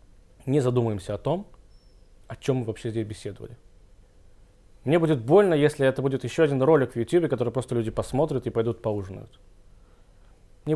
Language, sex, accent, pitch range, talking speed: Russian, male, native, 100-130 Hz, 160 wpm